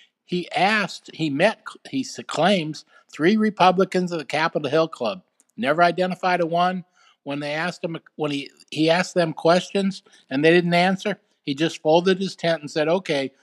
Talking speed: 175 wpm